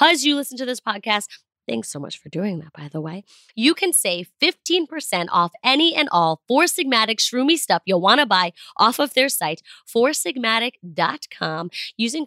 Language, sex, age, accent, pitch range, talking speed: English, female, 20-39, American, 175-270 Hz, 175 wpm